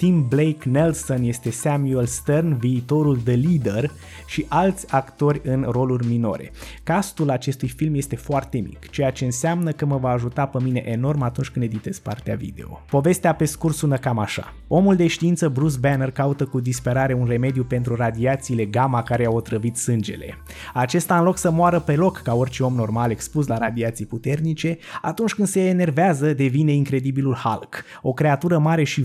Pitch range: 120-155 Hz